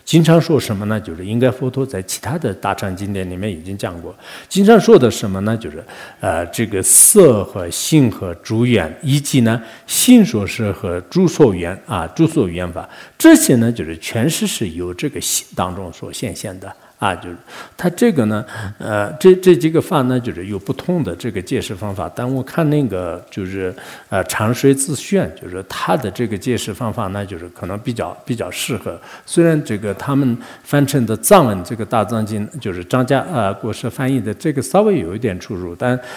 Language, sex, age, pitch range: English, male, 50-69, 95-130 Hz